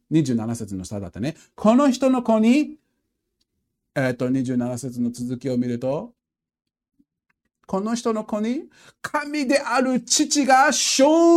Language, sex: Japanese, male